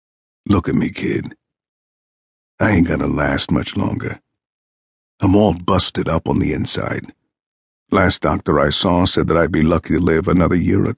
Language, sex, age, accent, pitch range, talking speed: English, male, 50-69, American, 80-105 Hz, 170 wpm